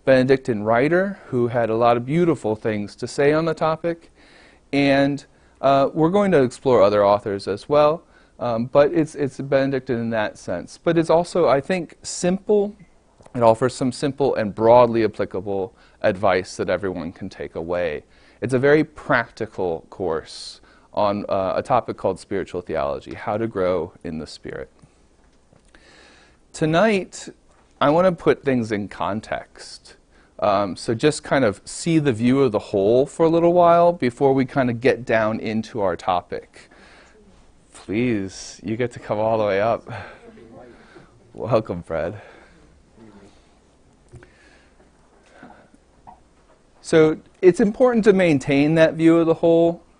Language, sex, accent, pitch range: English, male, American, 115-160 Hz